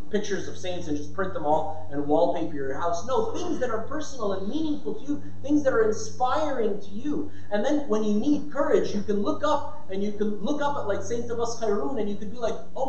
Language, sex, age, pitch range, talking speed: English, male, 30-49, 180-290 Hz, 245 wpm